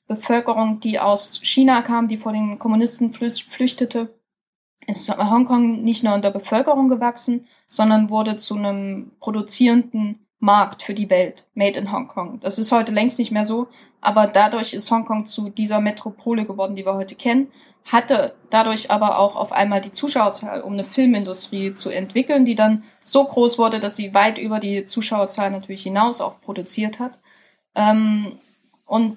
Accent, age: German, 10-29